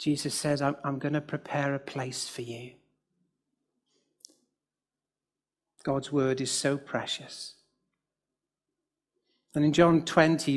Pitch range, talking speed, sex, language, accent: 140-190 Hz, 110 wpm, male, English, British